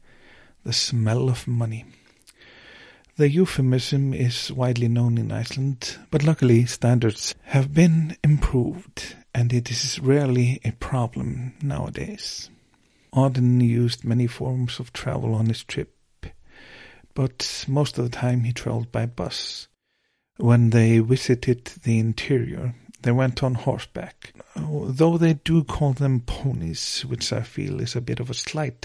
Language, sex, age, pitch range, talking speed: English, male, 50-69, 115-135 Hz, 135 wpm